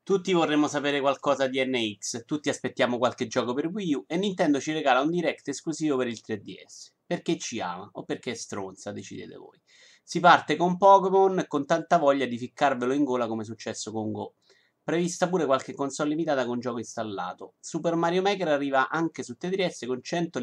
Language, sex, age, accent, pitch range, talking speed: Italian, male, 30-49, native, 125-170 Hz, 190 wpm